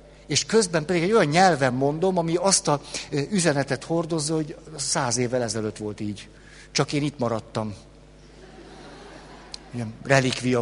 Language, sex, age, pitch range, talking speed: Hungarian, male, 60-79, 120-150 Hz, 135 wpm